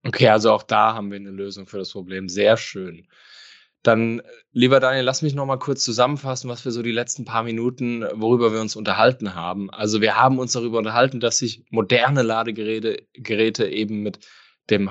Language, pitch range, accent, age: German, 105-130 Hz, German, 10-29